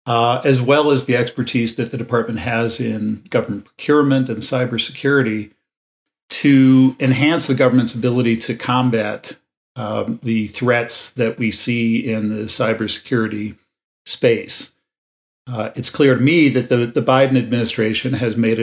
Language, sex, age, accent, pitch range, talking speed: English, male, 50-69, American, 110-125 Hz, 140 wpm